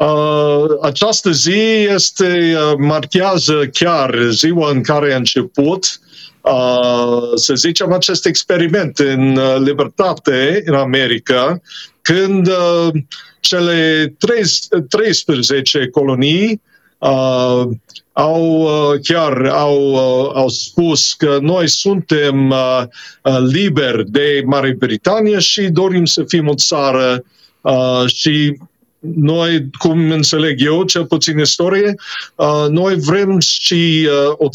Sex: male